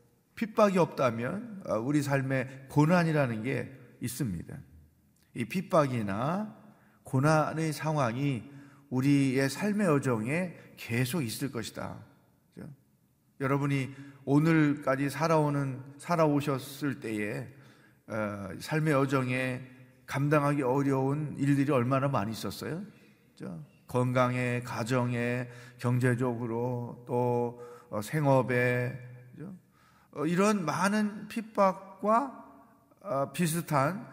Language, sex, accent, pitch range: Korean, male, native, 120-155 Hz